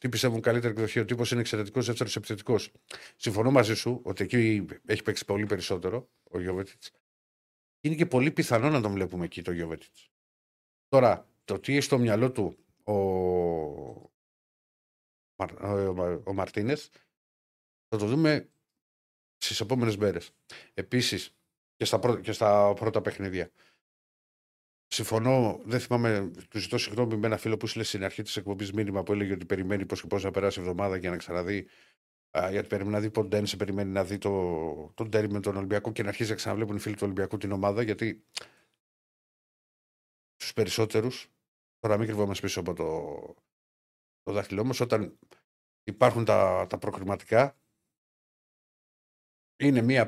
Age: 50-69